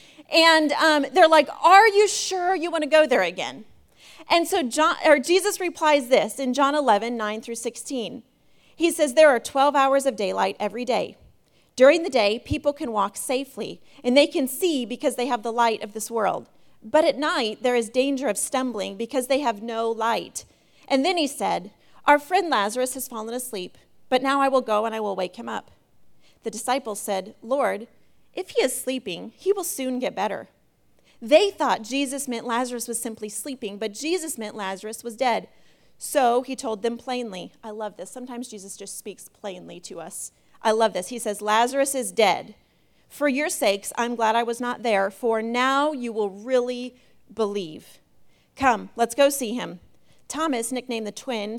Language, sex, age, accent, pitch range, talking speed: English, female, 30-49, American, 220-285 Hz, 190 wpm